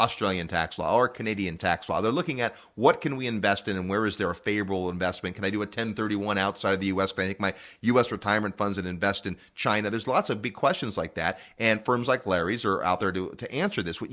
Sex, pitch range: male, 95-125 Hz